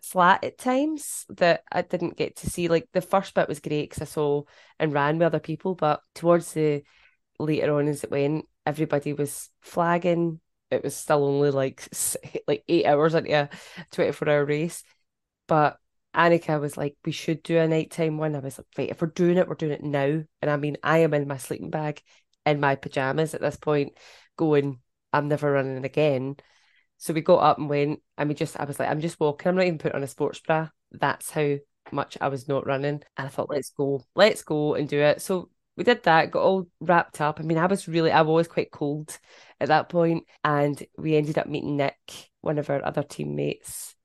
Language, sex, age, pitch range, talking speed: English, female, 10-29, 145-165 Hz, 215 wpm